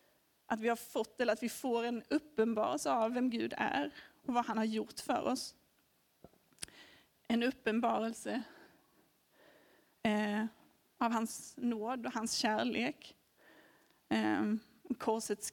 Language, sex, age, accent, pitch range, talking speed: Swedish, female, 30-49, native, 235-290 Hz, 115 wpm